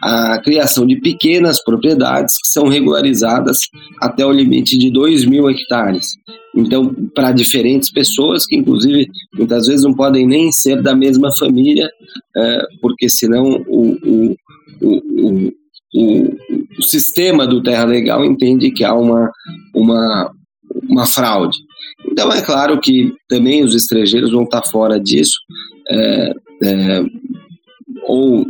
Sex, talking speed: male, 120 wpm